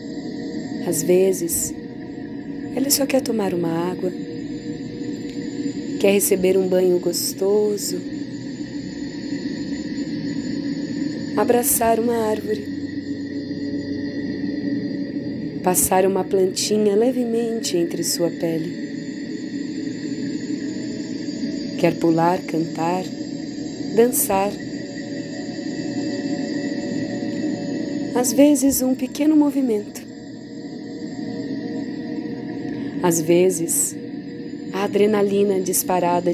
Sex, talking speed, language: female, 60 wpm, Portuguese